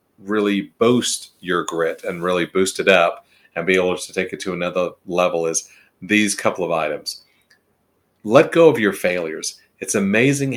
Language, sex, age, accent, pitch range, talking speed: English, male, 40-59, American, 90-120 Hz, 170 wpm